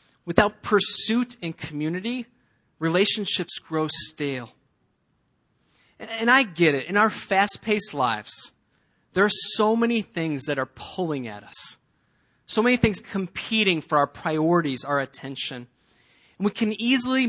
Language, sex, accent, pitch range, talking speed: English, male, American, 145-210 Hz, 135 wpm